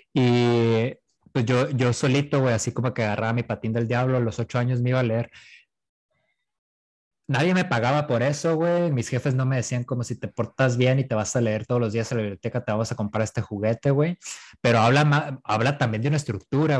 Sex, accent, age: male, Mexican, 20-39